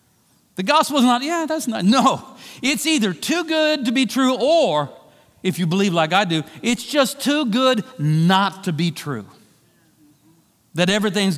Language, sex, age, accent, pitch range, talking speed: English, male, 50-69, American, 165-240 Hz, 170 wpm